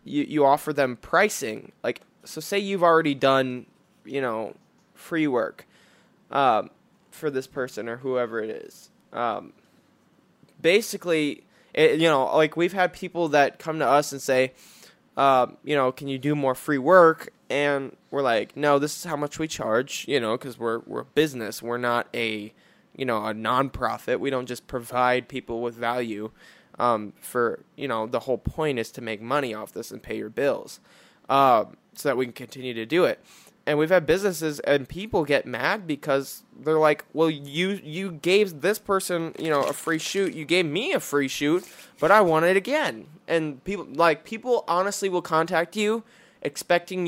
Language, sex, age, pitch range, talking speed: English, male, 10-29, 130-175 Hz, 190 wpm